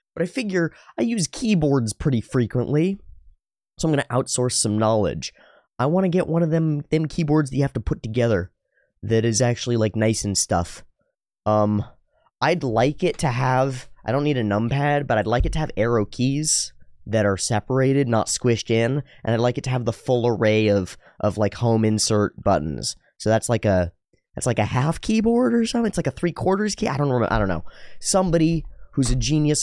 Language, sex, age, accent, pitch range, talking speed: English, male, 20-39, American, 95-130 Hz, 205 wpm